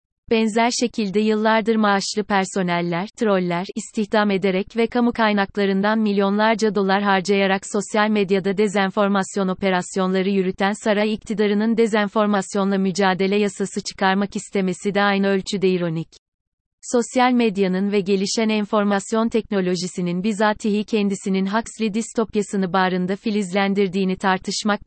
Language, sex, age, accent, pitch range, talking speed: Turkish, female, 30-49, native, 190-220 Hz, 105 wpm